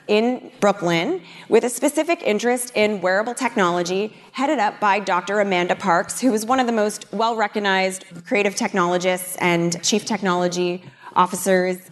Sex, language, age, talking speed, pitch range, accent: female, English, 20-39, 140 wpm, 190-250 Hz, American